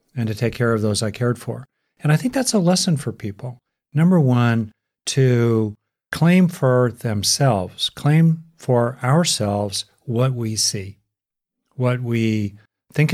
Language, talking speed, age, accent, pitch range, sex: English, 145 wpm, 50-69, American, 105-125 Hz, male